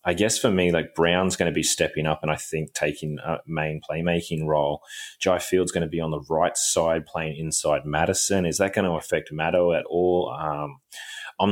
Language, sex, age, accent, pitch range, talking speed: English, male, 20-39, Australian, 75-85 Hz, 215 wpm